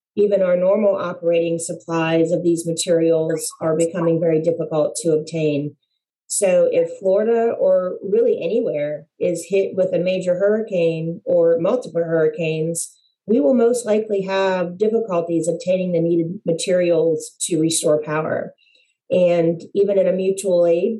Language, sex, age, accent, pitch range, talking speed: English, female, 40-59, American, 170-195 Hz, 135 wpm